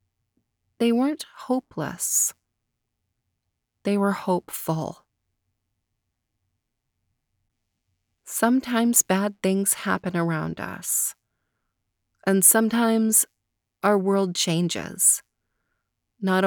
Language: English